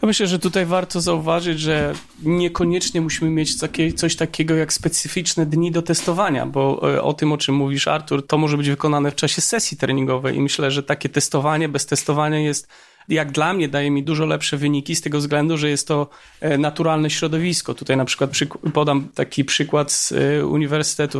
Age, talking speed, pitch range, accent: 30-49, 180 wpm, 150-165 Hz, native